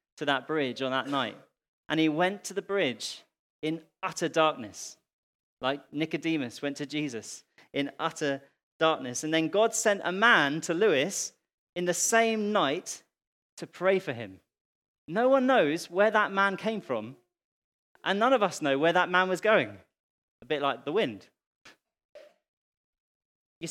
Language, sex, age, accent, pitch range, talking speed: English, male, 30-49, British, 150-210 Hz, 160 wpm